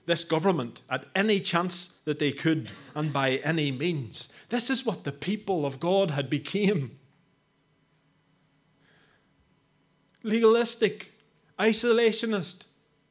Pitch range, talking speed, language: 155-215 Hz, 105 wpm, English